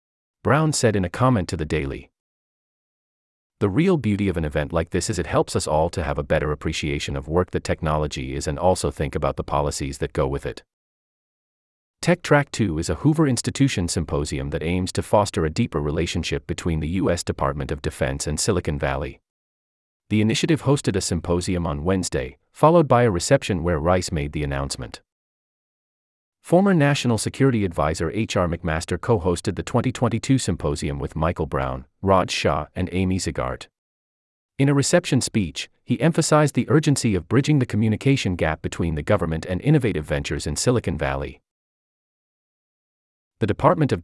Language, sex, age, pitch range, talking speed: English, male, 30-49, 75-115 Hz, 170 wpm